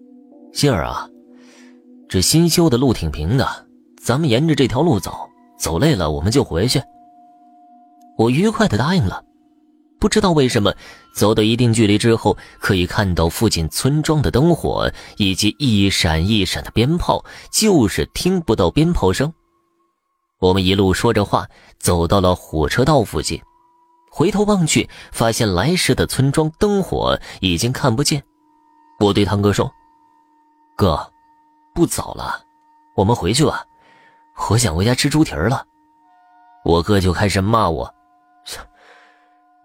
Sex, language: male, Chinese